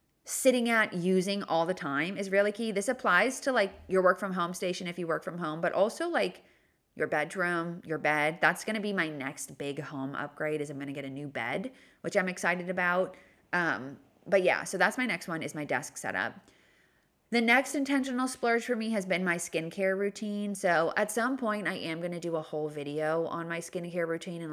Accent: American